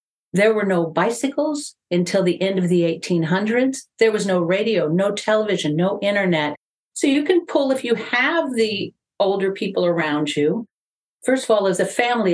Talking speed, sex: 175 wpm, female